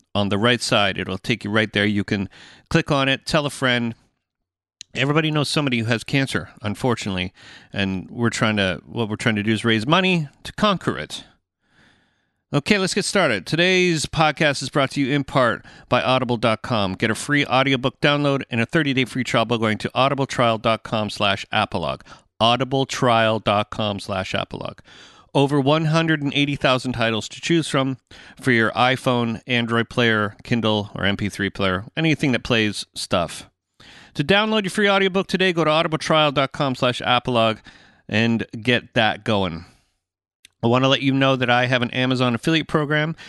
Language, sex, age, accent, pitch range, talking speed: English, male, 40-59, American, 110-145 Hz, 155 wpm